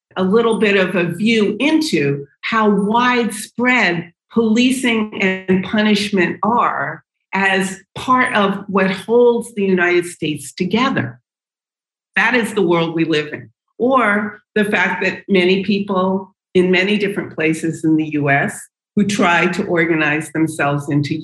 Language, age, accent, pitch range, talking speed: English, 50-69, American, 155-205 Hz, 135 wpm